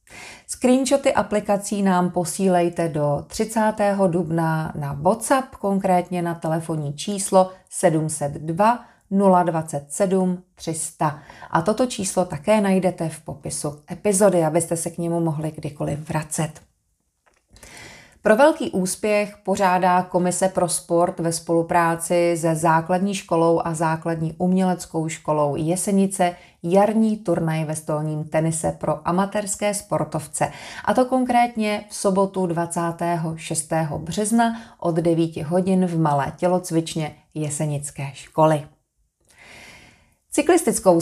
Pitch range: 160-195 Hz